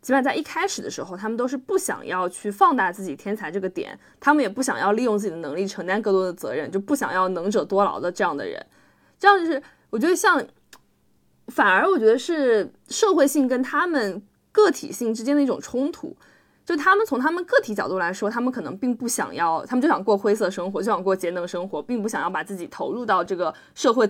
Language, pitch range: Chinese, 190-275 Hz